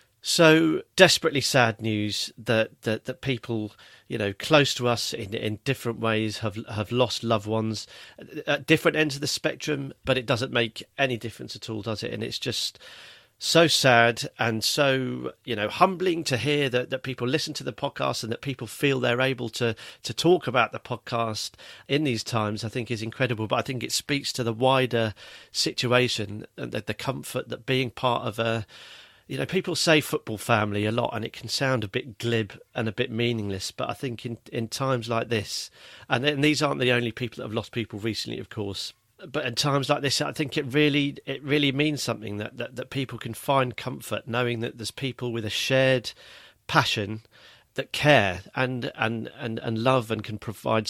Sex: male